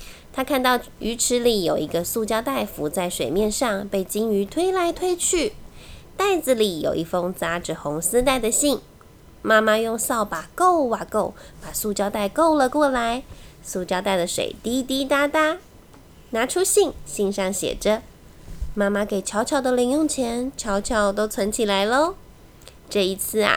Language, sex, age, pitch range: Chinese, female, 20-39, 200-285 Hz